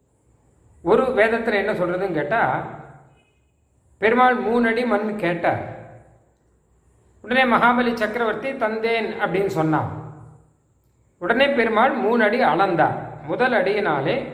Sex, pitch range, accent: male, 160-230 Hz, native